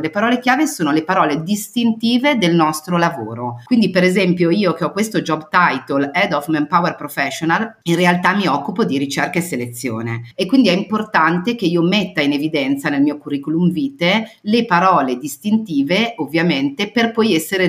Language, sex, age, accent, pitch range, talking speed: Italian, female, 40-59, native, 155-220 Hz, 175 wpm